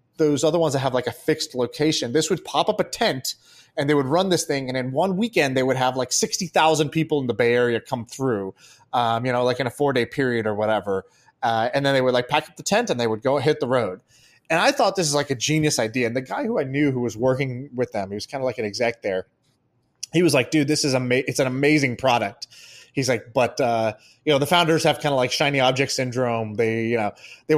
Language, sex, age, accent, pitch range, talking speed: English, male, 20-39, American, 125-170 Hz, 270 wpm